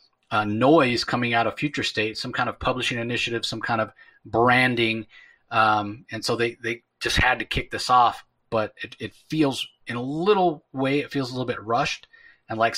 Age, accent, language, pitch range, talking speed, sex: 30-49, American, English, 115-150 Hz, 200 wpm, male